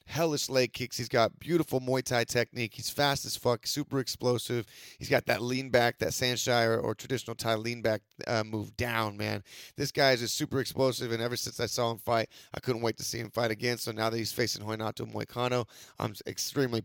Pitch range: 115-130 Hz